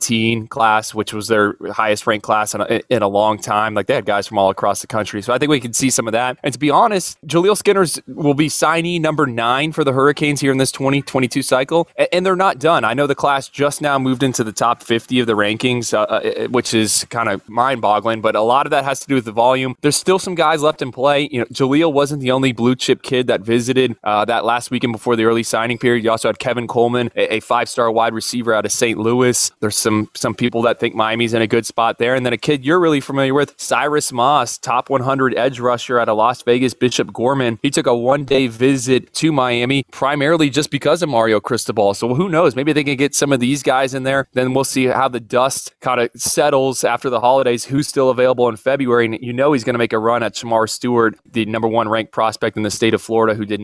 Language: English